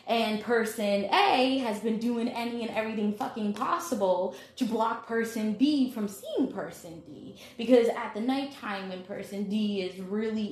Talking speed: 160 wpm